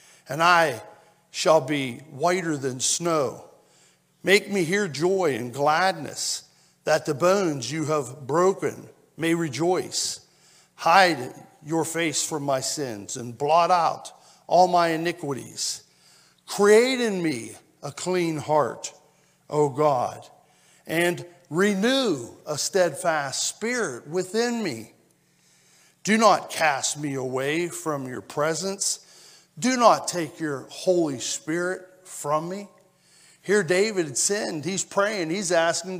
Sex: male